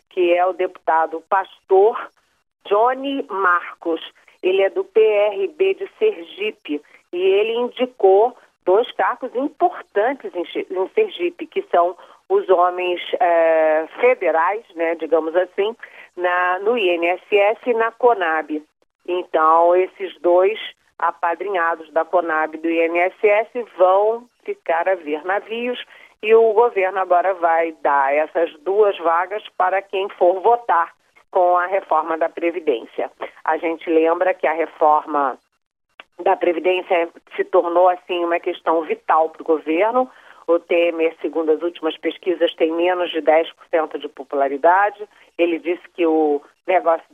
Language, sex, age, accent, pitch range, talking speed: Portuguese, female, 40-59, Brazilian, 165-215 Hz, 125 wpm